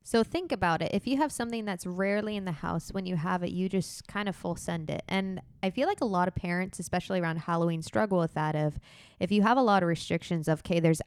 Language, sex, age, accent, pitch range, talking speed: English, female, 20-39, American, 160-195 Hz, 265 wpm